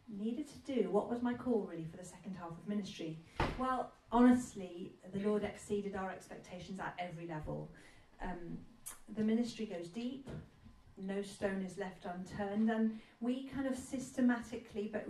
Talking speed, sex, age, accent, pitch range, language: 160 wpm, female, 40-59, British, 180-220 Hz, English